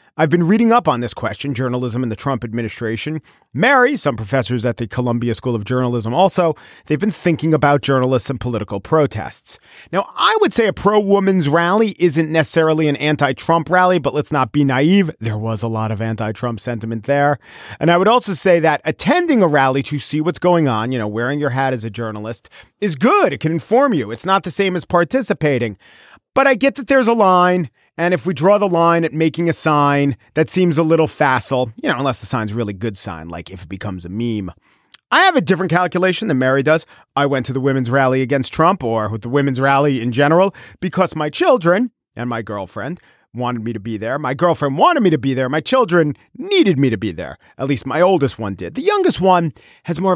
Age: 40-59